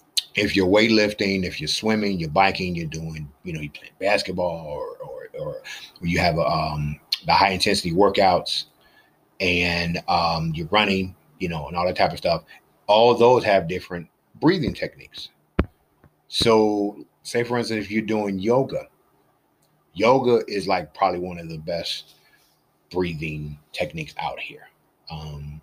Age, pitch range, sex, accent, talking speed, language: 30-49, 80-105 Hz, male, American, 155 wpm, English